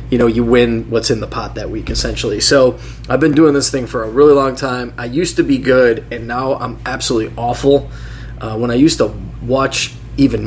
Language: English